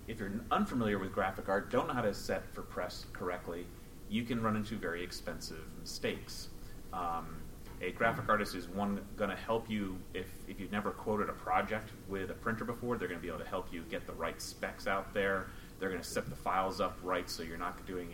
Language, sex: English, male